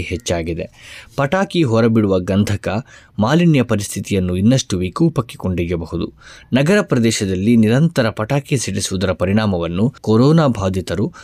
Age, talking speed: 20-39, 90 wpm